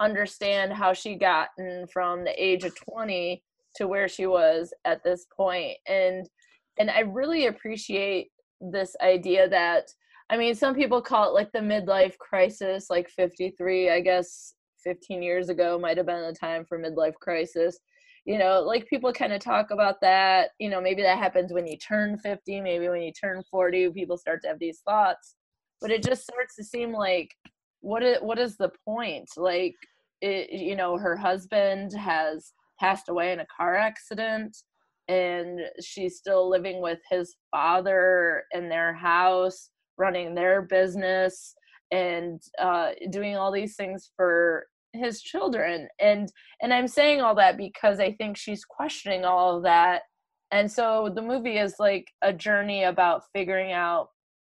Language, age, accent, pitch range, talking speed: English, 20-39, American, 180-215 Hz, 165 wpm